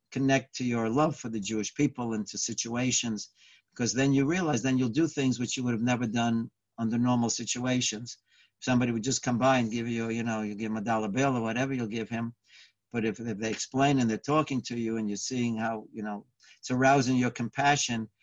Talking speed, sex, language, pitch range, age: 225 wpm, male, English, 110-130 Hz, 60-79